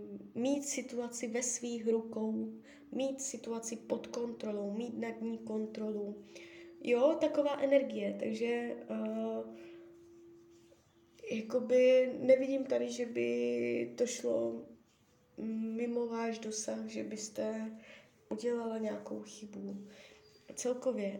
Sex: female